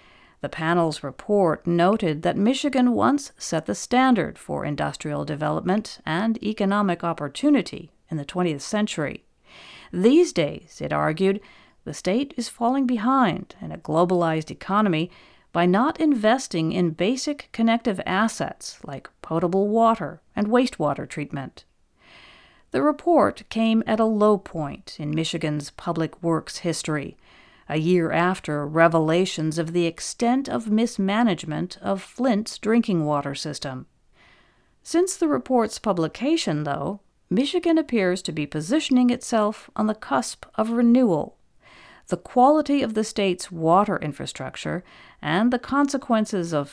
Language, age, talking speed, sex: English, 50-69, 125 wpm, female